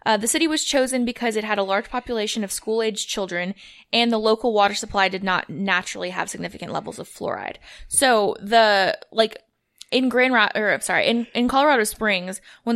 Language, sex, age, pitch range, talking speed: English, female, 20-39, 185-235 Hz, 195 wpm